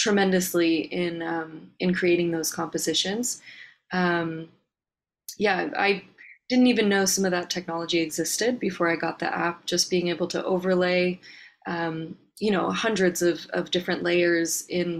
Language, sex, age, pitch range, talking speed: English, female, 20-39, 170-195 Hz, 150 wpm